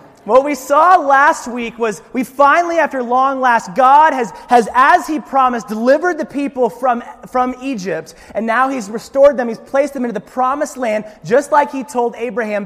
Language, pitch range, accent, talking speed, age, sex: English, 195-270 Hz, American, 190 wpm, 30-49, male